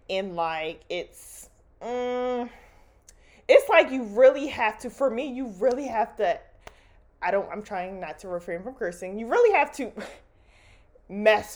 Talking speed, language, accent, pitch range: 155 wpm, English, American, 195-325 Hz